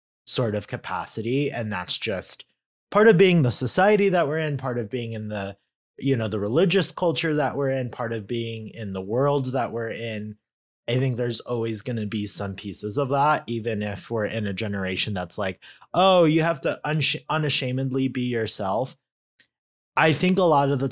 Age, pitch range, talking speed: 30-49, 110-140 Hz, 195 wpm